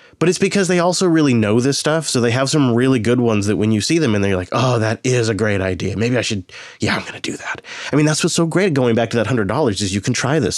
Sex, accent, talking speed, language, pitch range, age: male, American, 320 wpm, English, 110-140 Hz, 20-39